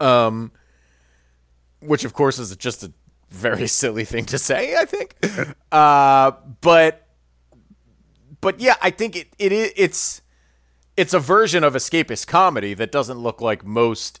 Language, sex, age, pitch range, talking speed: English, male, 30-49, 100-140 Hz, 150 wpm